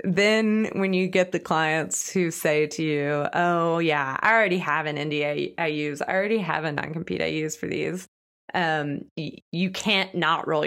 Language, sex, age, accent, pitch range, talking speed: English, female, 20-39, American, 155-190 Hz, 200 wpm